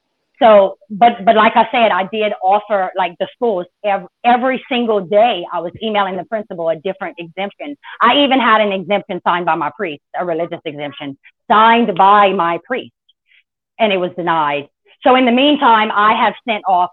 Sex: female